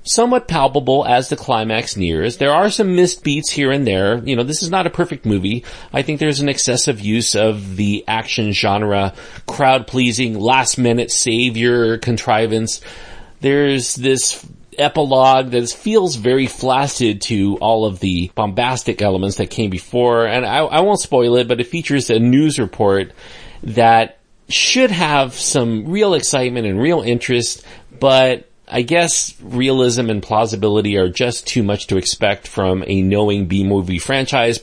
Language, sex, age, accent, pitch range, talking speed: English, male, 40-59, American, 100-135 Hz, 155 wpm